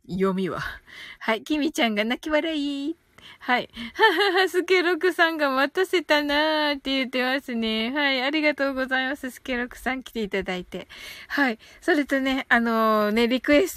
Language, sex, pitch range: Japanese, female, 220-285 Hz